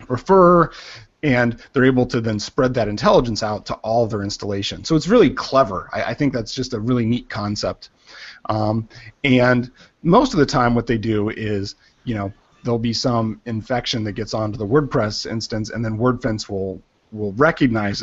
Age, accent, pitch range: 30-49, American, 110-135 Hz